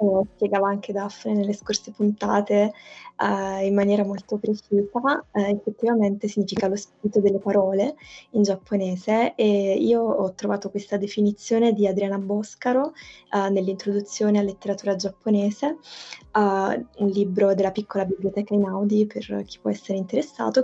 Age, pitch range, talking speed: 20-39, 200-225 Hz, 135 wpm